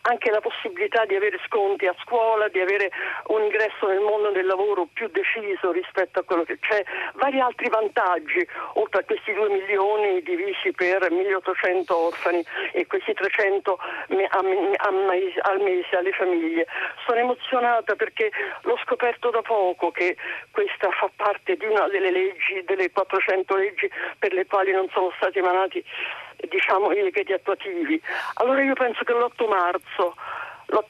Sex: female